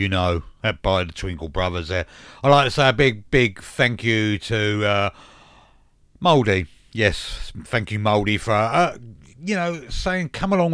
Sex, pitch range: male, 95-125 Hz